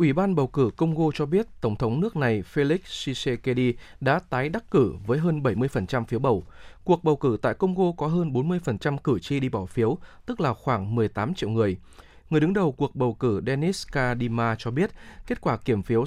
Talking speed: 205 wpm